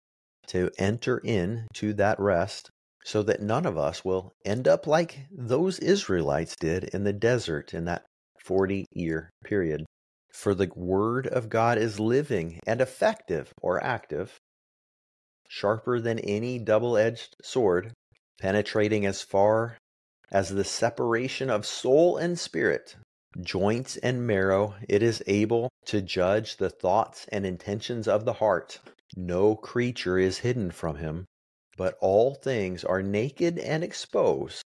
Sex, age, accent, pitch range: male, 40-59, American, 90-120 Hz